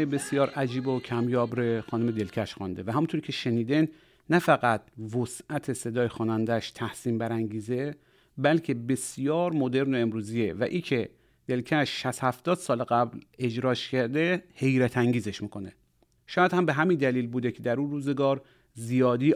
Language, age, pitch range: Persian, 40-59, 115-150 Hz